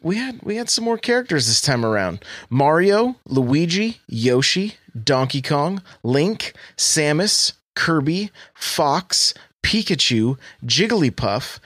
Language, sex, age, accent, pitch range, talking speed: English, male, 30-49, American, 125-190 Hz, 110 wpm